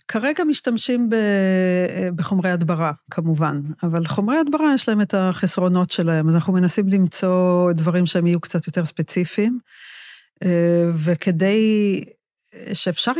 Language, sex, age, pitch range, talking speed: Hebrew, female, 50-69, 170-190 Hz, 115 wpm